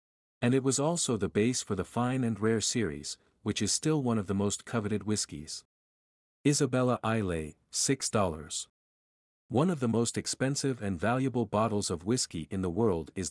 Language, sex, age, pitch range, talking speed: English, male, 50-69, 90-125 Hz, 170 wpm